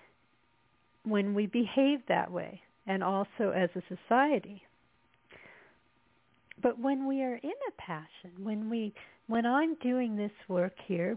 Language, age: English, 50-69